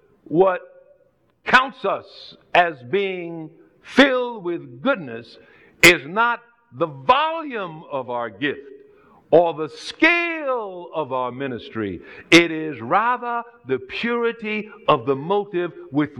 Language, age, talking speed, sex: English, 60-79, 110 wpm, male